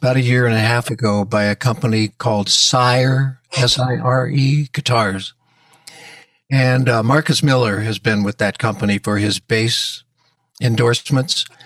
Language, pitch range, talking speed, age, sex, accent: English, 110-145 Hz, 140 wpm, 60-79, male, American